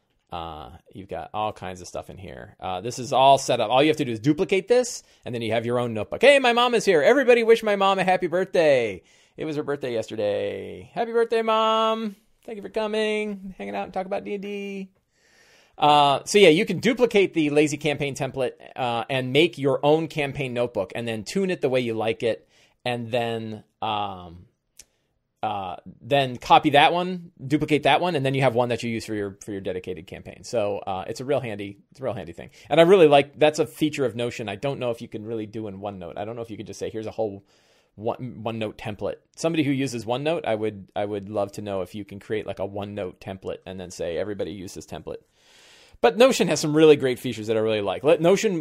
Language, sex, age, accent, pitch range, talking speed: English, male, 30-49, American, 110-160 Hz, 240 wpm